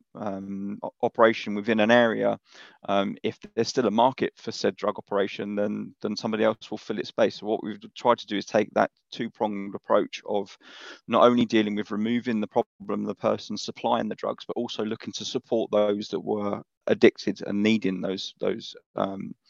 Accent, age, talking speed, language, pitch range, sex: British, 20-39, 190 wpm, English, 100-115 Hz, male